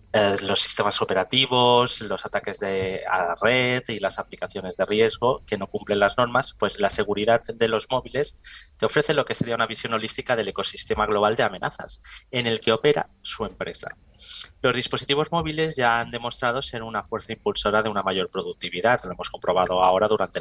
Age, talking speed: 20-39, 185 wpm